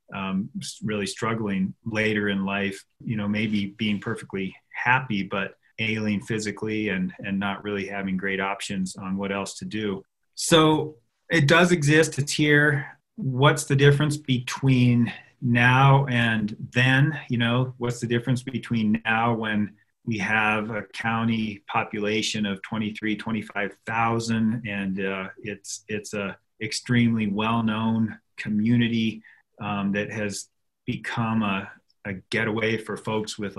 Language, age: English, 40-59